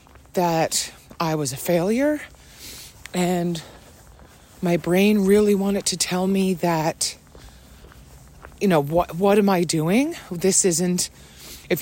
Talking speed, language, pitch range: 120 wpm, English, 165-210 Hz